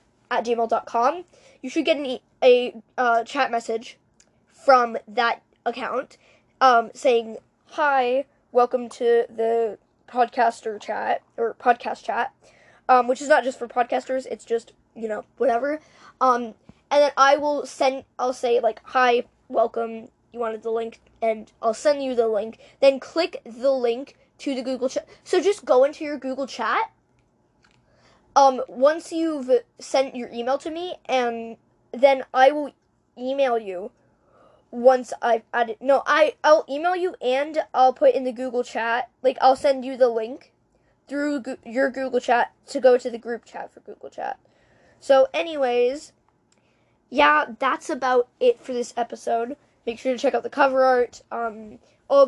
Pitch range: 235-280 Hz